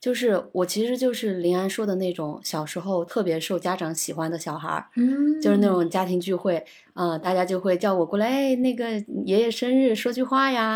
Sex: female